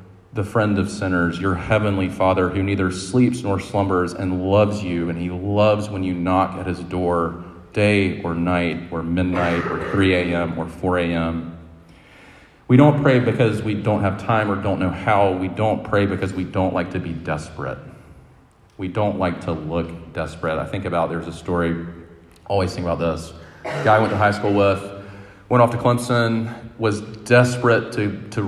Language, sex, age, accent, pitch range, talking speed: English, male, 40-59, American, 90-115 Hz, 180 wpm